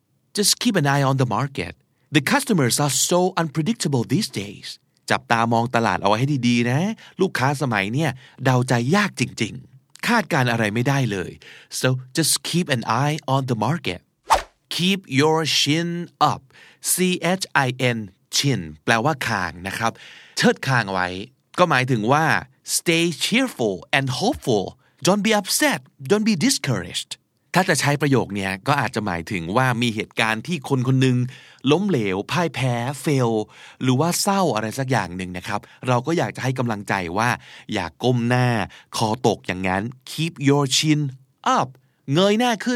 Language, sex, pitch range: Thai, male, 120-160 Hz